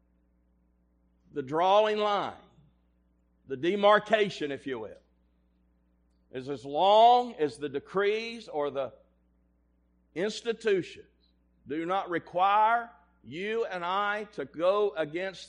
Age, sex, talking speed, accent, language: 50-69, male, 100 wpm, American, English